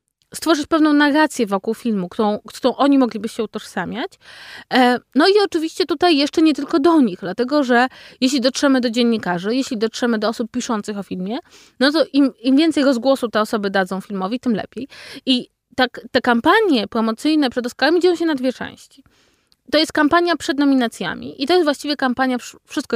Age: 20-39